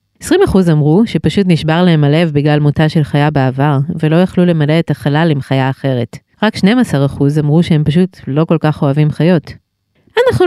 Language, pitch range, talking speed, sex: Hebrew, 140-190 Hz, 170 wpm, female